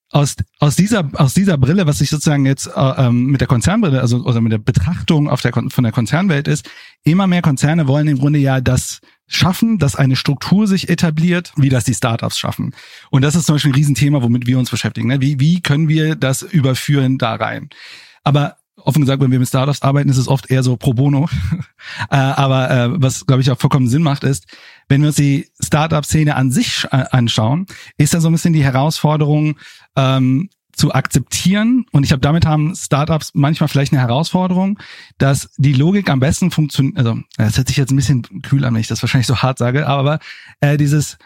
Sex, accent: male, German